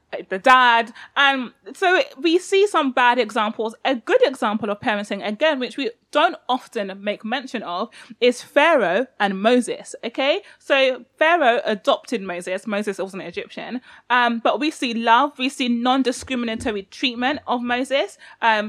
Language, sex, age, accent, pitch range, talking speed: English, female, 20-39, British, 215-265 Hz, 150 wpm